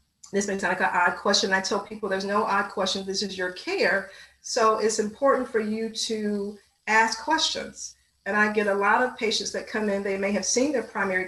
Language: English